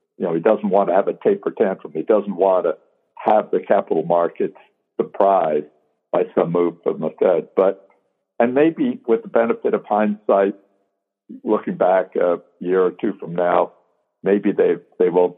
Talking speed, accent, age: 175 wpm, American, 60-79